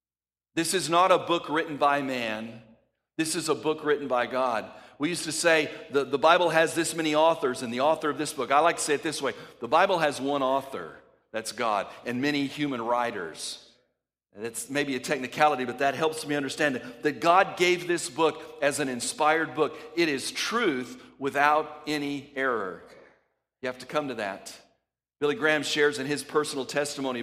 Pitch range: 135-165 Hz